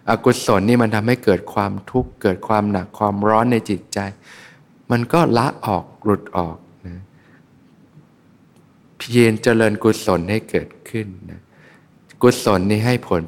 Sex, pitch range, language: male, 100-115 Hz, Thai